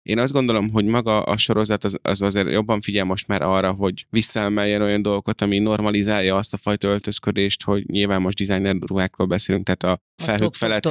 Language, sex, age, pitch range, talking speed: Hungarian, male, 20-39, 95-110 Hz, 195 wpm